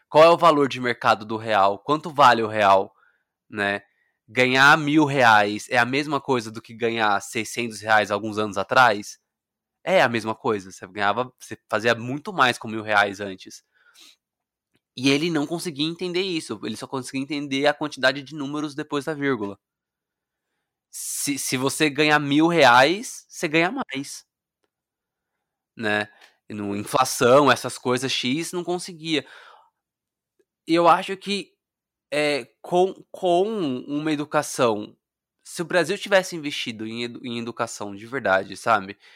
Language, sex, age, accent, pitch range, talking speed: Portuguese, male, 20-39, Brazilian, 110-150 Hz, 145 wpm